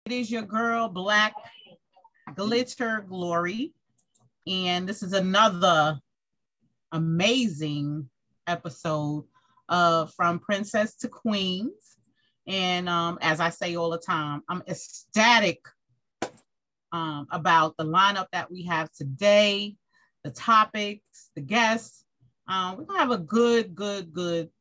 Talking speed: 115 wpm